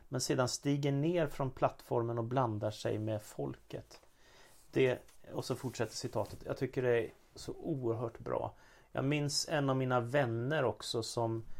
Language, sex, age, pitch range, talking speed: Swedish, male, 30-49, 110-125 Hz, 160 wpm